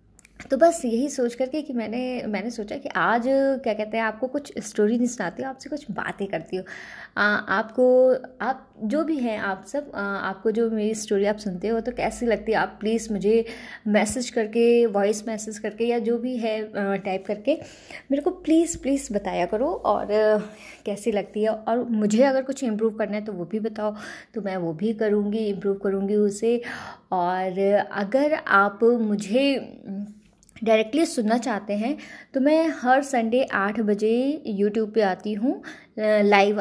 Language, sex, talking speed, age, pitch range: Hindi, female, 170 wpm, 20-39, 210-255 Hz